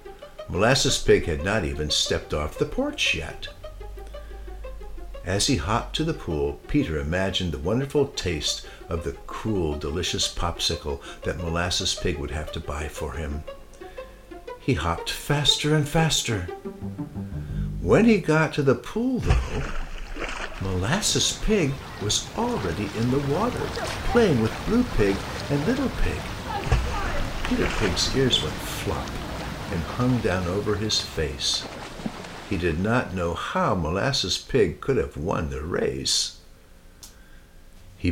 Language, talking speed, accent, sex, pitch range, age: English, 135 wpm, American, male, 85-135 Hz, 60-79